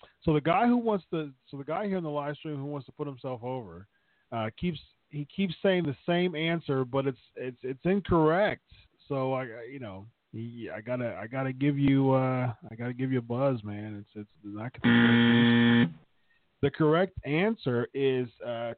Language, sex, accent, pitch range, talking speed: English, male, American, 115-145 Hz, 195 wpm